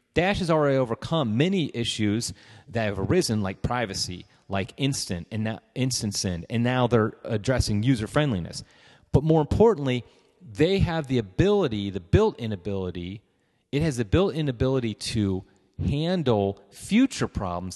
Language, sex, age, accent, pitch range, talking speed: English, male, 30-49, American, 105-145 Hz, 130 wpm